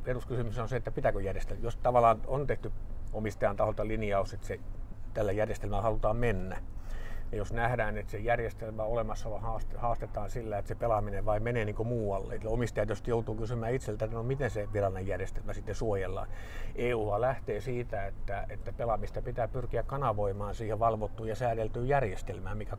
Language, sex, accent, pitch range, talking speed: Finnish, male, native, 100-120 Hz, 175 wpm